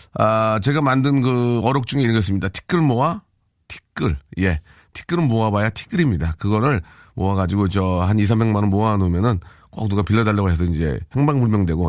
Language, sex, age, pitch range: Korean, male, 40-59, 95-130 Hz